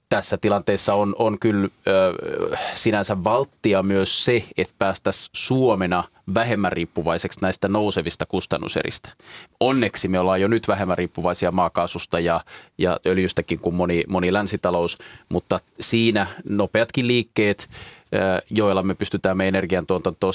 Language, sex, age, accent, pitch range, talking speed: Finnish, male, 20-39, native, 90-105 Hz, 120 wpm